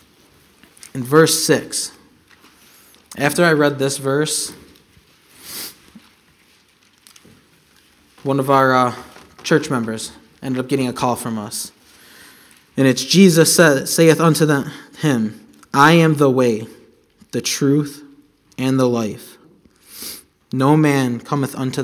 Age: 20-39